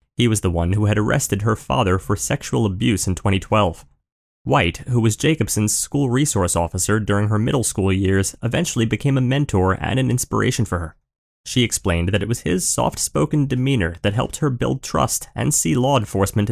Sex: male